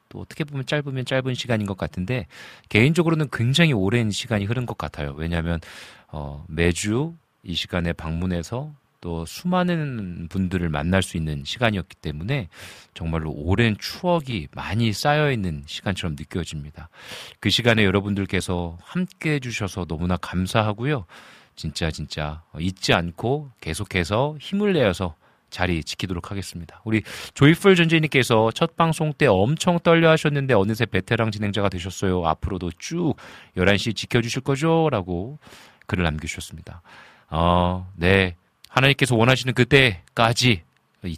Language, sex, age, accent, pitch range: Korean, male, 40-59, native, 85-125 Hz